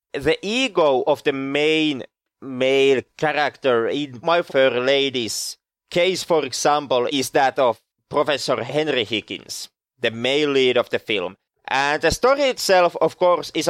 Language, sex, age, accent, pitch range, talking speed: English, male, 30-49, Finnish, 125-180 Hz, 145 wpm